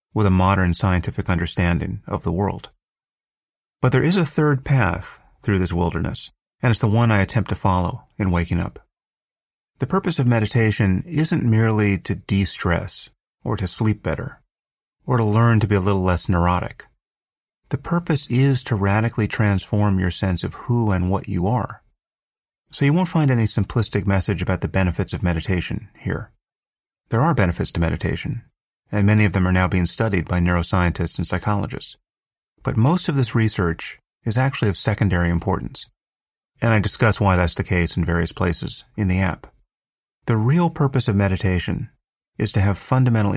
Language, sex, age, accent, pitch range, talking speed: English, male, 40-59, American, 95-120 Hz, 175 wpm